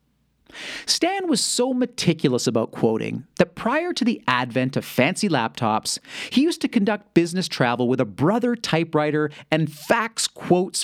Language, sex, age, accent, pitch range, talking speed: English, male, 40-59, American, 130-215 Hz, 150 wpm